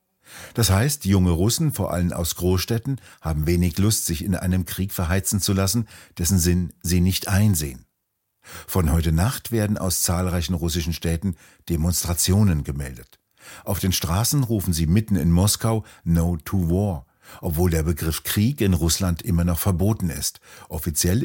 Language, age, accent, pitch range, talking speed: German, 60-79, German, 85-100 Hz, 155 wpm